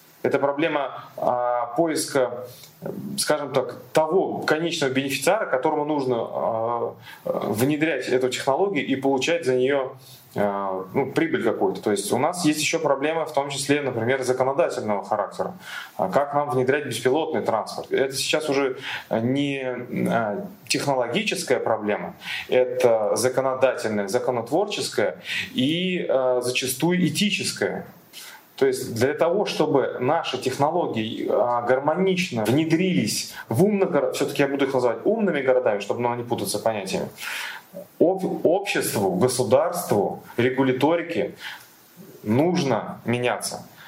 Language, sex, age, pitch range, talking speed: Russian, male, 20-39, 125-170 Hz, 110 wpm